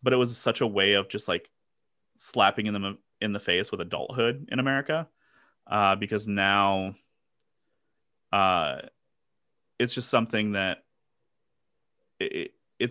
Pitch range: 95-110 Hz